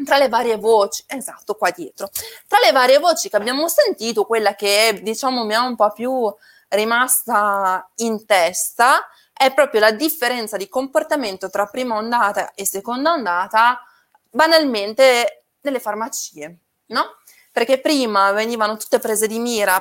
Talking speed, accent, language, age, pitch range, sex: 145 wpm, native, Italian, 20-39, 200-260 Hz, female